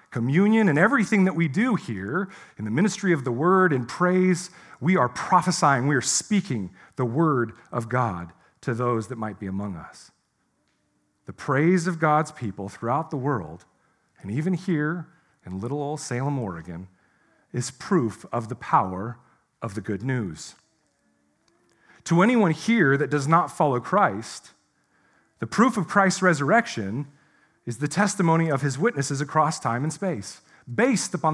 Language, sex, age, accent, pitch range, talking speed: English, male, 40-59, American, 130-185 Hz, 155 wpm